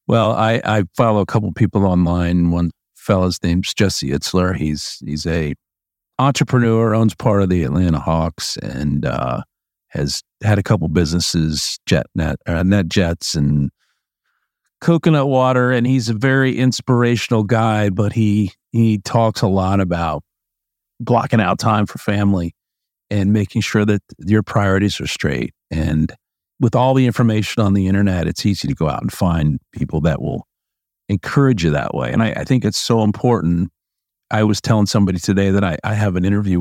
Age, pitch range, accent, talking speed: 50-69, 90-115 Hz, American, 170 wpm